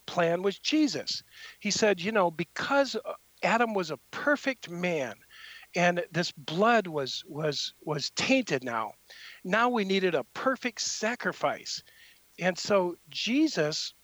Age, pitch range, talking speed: 50-69, 165-220 Hz, 130 wpm